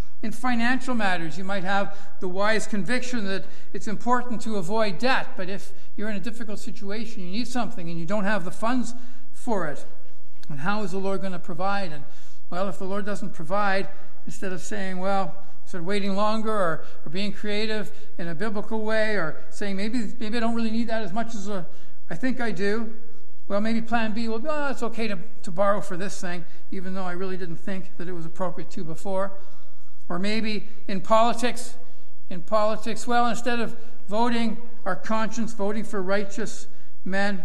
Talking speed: 195 wpm